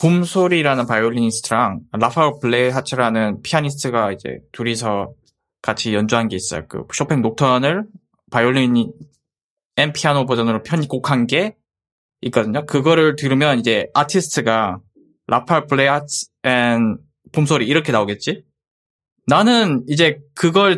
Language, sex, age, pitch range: Korean, male, 20-39, 115-185 Hz